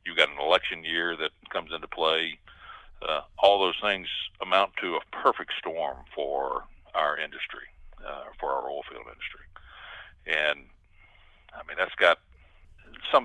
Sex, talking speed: male, 150 wpm